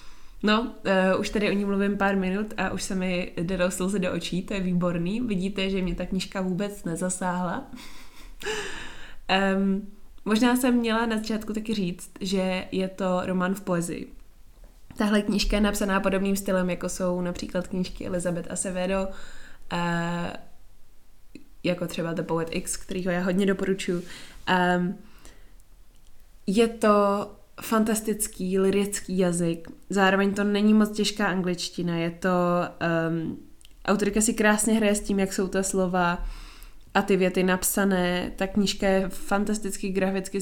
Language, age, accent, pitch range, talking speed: Czech, 20-39, native, 180-200 Hz, 145 wpm